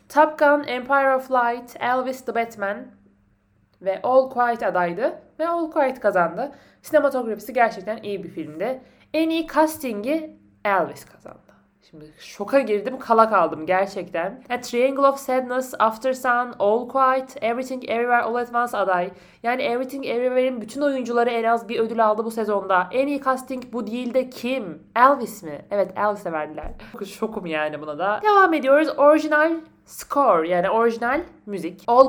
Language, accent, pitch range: Turkish, native, 190-260 Hz